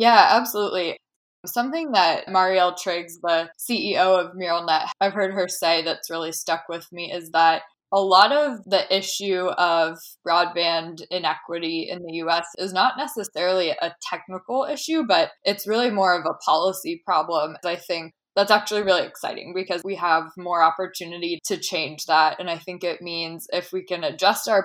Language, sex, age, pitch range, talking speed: English, female, 20-39, 170-200 Hz, 170 wpm